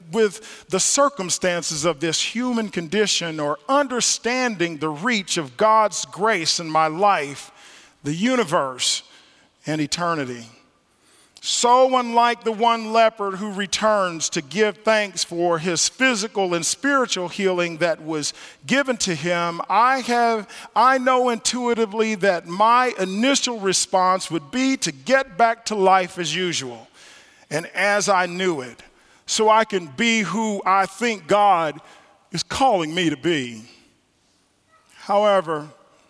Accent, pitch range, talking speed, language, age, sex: American, 175-230 Hz, 130 wpm, English, 50-69, male